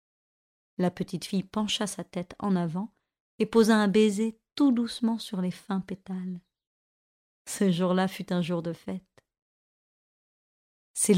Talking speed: 140 wpm